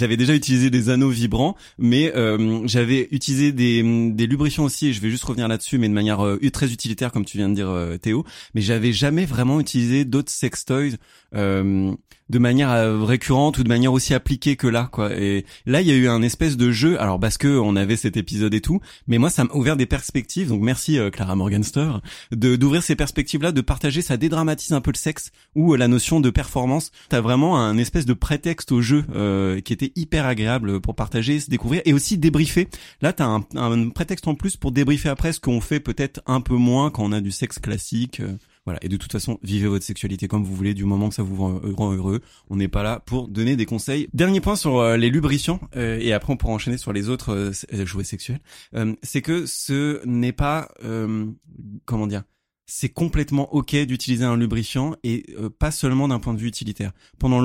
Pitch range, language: 110-145 Hz, French